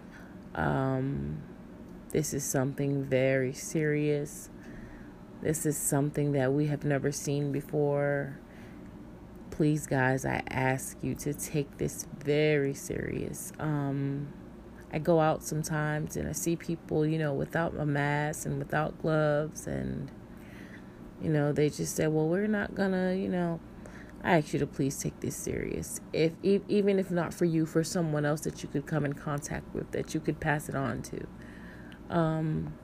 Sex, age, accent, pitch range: female, 30-49, American, 135-160 Hz